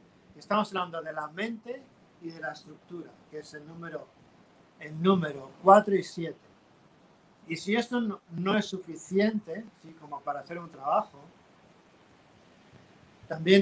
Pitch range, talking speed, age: 155-195 Hz, 140 wpm, 50-69